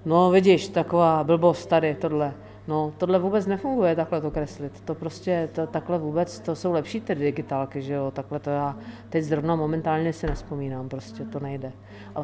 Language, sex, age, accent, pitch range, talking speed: Czech, female, 40-59, native, 150-185 Hz, 175 wpm